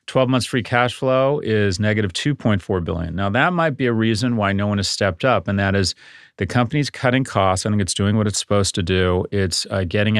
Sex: male